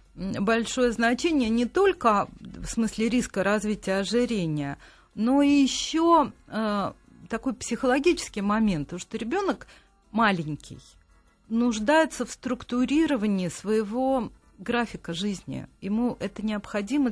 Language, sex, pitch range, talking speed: Russian, female, 190-245 Hz, 100 wpm